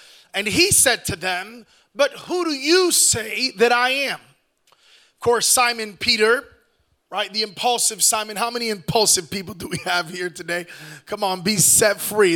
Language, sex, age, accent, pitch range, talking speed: English, male, 30-49, American, 205-285 Hz, 170 wpm